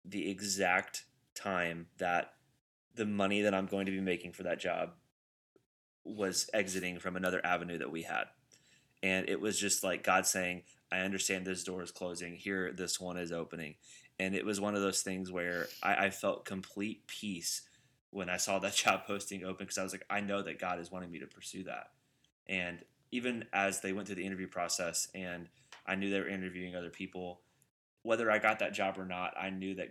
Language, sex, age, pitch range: English, male, 20-39, 90-100 Hz